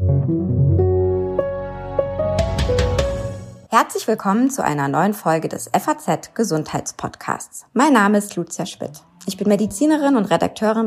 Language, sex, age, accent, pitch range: German, female, 20-39, German, 165-230 Hz